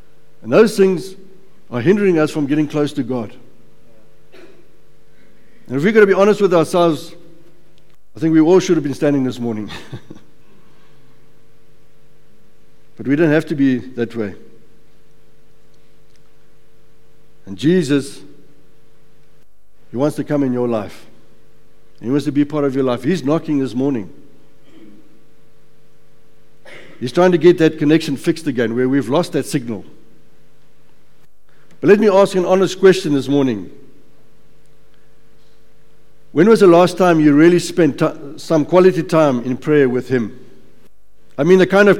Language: English